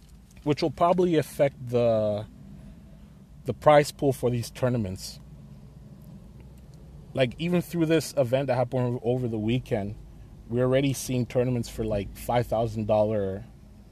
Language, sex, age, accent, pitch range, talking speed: English, male, 30-49, American, 105-135 Hz, 120 wpm